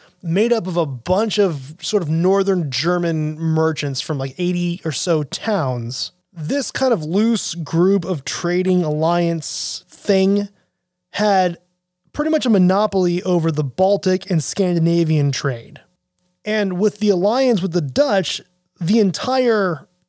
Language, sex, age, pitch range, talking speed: English, male, 20-39, 150-190 Hz, 135 wpm